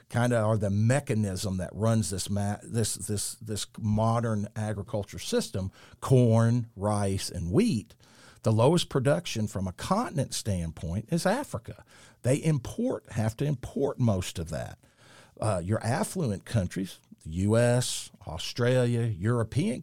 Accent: American